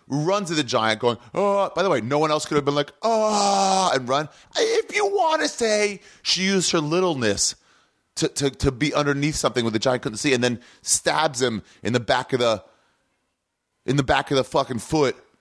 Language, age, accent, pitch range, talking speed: English, 30-49, American, 115-175 Hz, 215 wpm